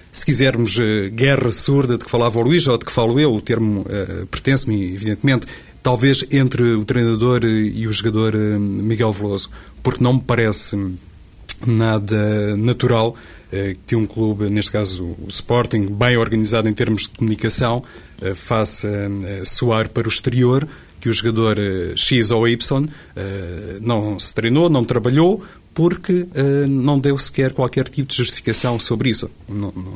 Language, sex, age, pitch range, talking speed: Portuguese, male, 30-49, 105-125 Hz, 145 wpm